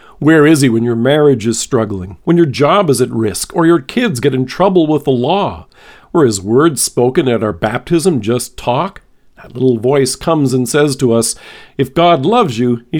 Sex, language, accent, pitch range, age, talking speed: male, English, American, 125-175 Hz, 50-69, 210 wpm